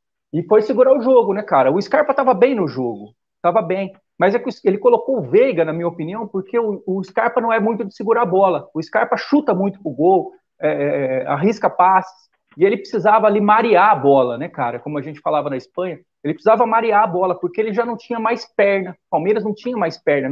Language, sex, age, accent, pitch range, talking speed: Portuguese, male, 40-59, Brazilian, 160-225 Hz, 235 wpm